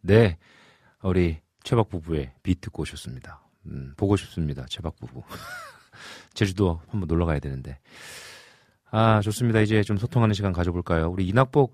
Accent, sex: native, male